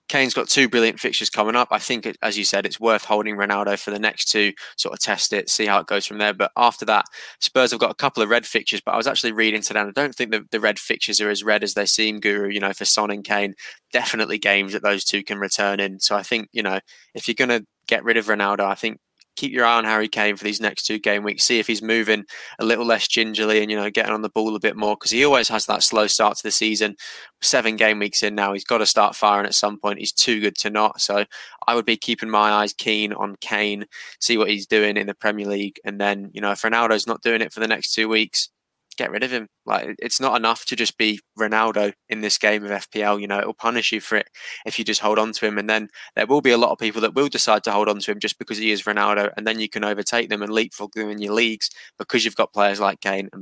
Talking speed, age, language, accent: 285 wpm, 20-39, English, British